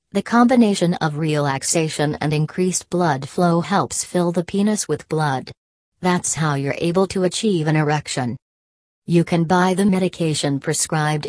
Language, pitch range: English, 145-175 Hz